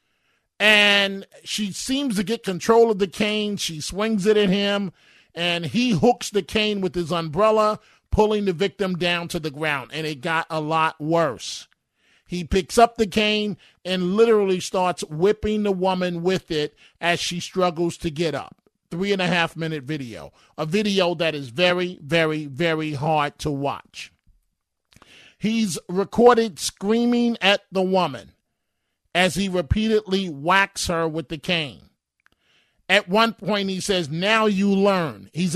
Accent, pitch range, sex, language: American, 165-205 Hz, male, English